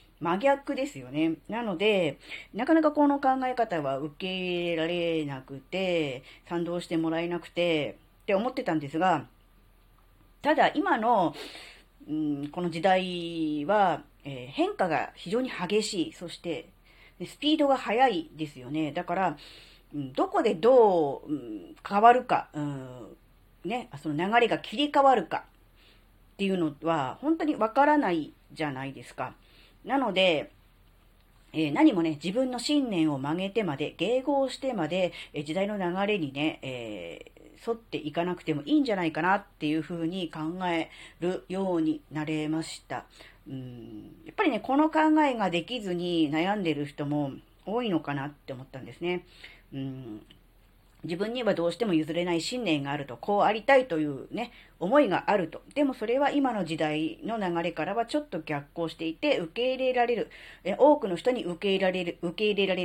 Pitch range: 150-225 Hz